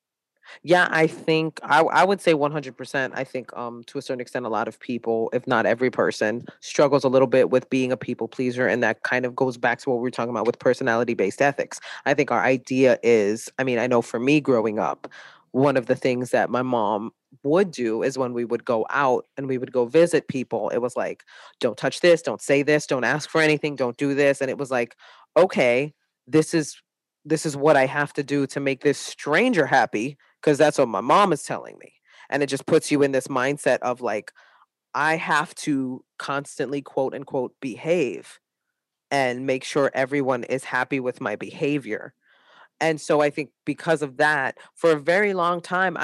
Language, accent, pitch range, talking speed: English, American, 125-150 Hz, 210 wpm